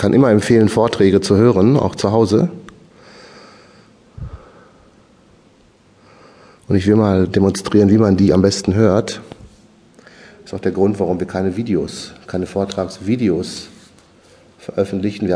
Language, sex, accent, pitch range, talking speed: German, male, German, 90-115 Hz, 135 wpm